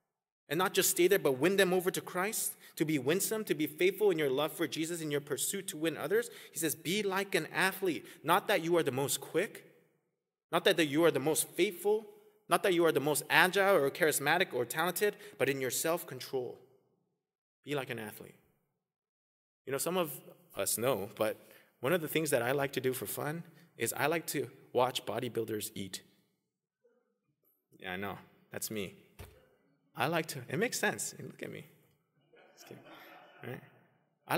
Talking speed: 190 wpm